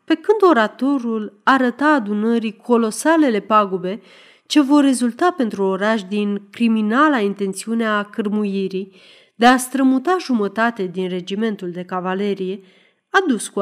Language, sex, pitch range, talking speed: Romanian, female, 195-285 Hz, 115 wpm